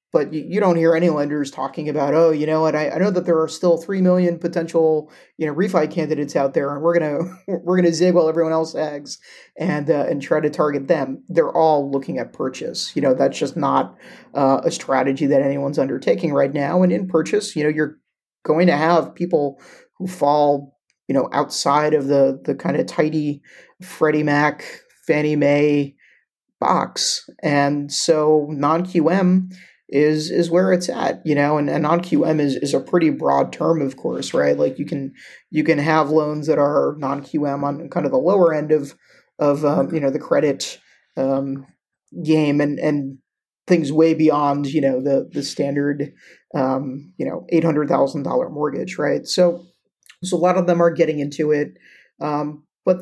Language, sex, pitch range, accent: English, male, 145-175 Hz, American